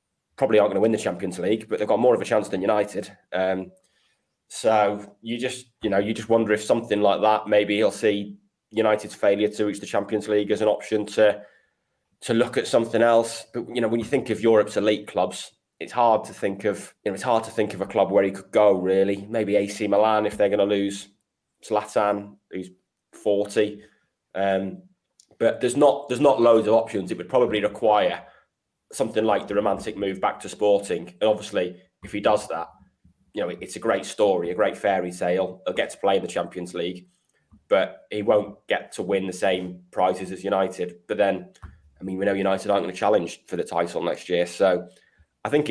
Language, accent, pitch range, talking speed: English, British, 95-110 Hz, 215 wpm